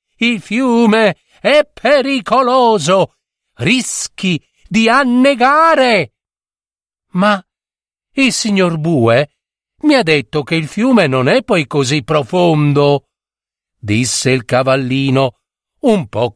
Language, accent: Italian, native